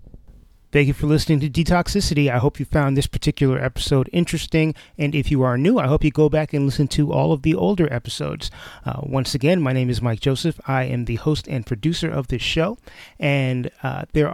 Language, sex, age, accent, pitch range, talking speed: English, male, 30-49, American, 130-160 Hz, 220 wpm